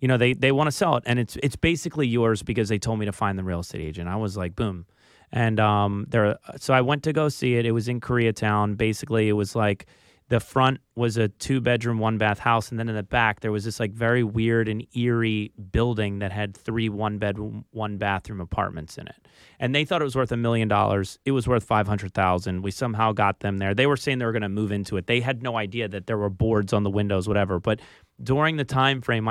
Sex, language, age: male, English, 30-49